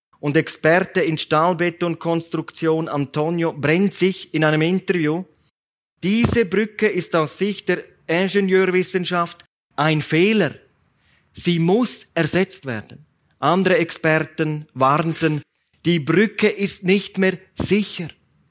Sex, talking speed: male, 105 wpm